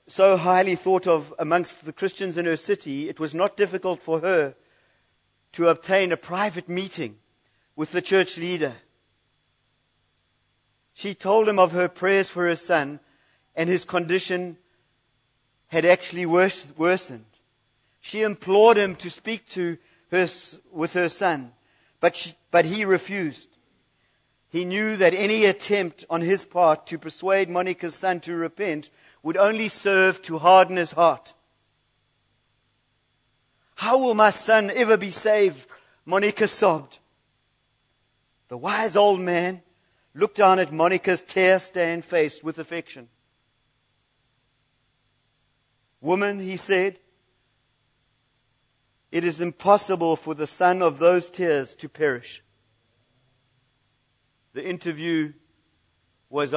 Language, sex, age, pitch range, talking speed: English, male, 50-69, 130-185 Hz, 120 wpm